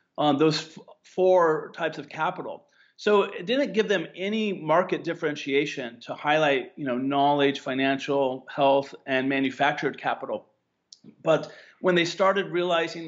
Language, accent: English, American